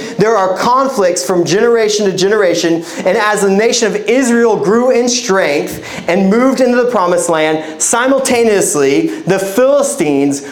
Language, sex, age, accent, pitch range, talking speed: English, male, 30-49, American, 175-235 Hz, 145 wpm